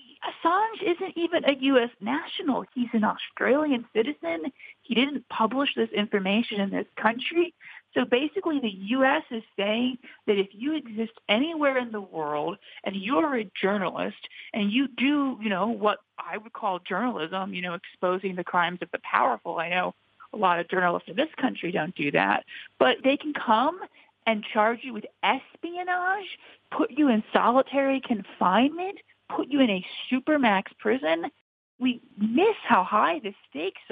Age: 40-59